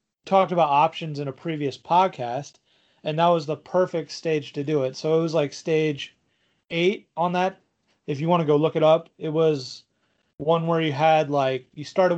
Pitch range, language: 145-170 Hz, English